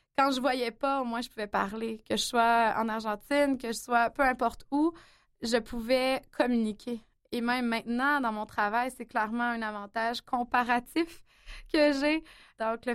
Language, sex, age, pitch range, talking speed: French, female, 20-39, 220-260 Hz, 180 wpm